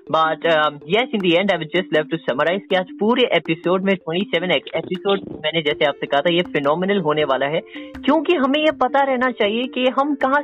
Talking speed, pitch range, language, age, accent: 155 wpm, 170-220 Hz, Hindi, 20-39, native